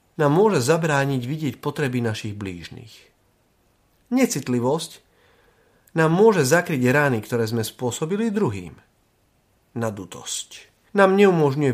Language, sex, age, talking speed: Slovak, male, 40-59, 95 wpm